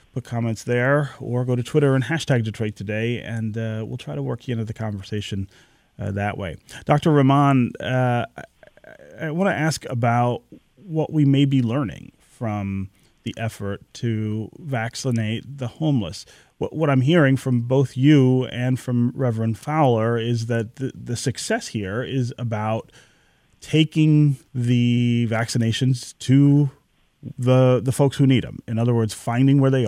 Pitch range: 115-135 Hz